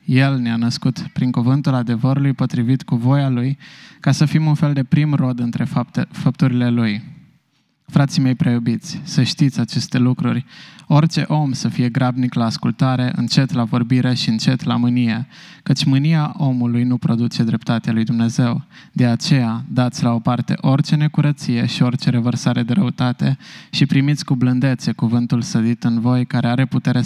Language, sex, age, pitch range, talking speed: Romanian, male, 20-39, 120-145 Hz, 165 wpm